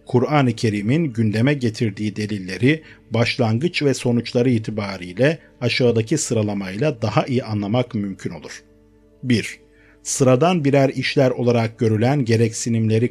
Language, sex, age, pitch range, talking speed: Turkish, male, 50-69, 110-140 Hz, 105 wpm